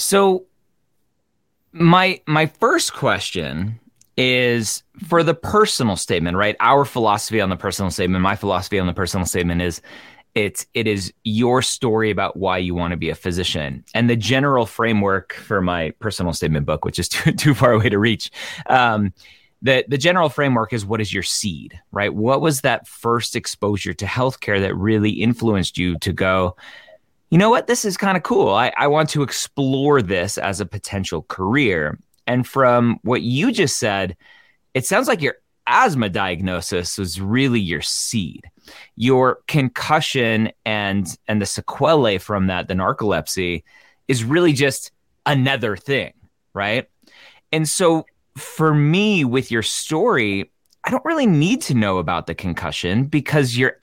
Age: 30-49